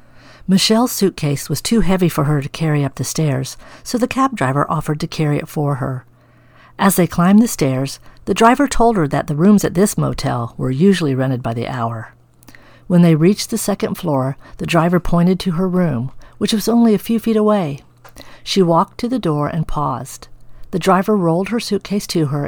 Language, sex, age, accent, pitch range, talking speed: English, female, 50-69, American, 135-190 Hz, 205 wpm